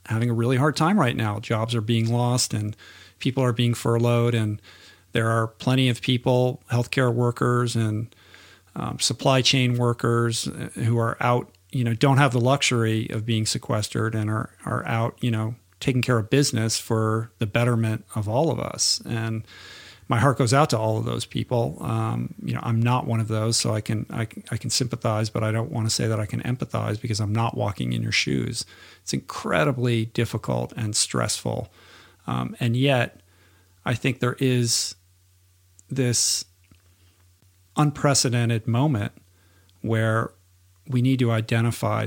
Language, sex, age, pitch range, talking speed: English, male, 50-69, 105-125 Hz, 175 wpm